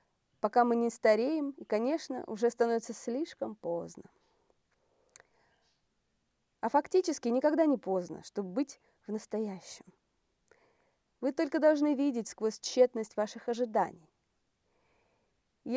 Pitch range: 210-275 Hz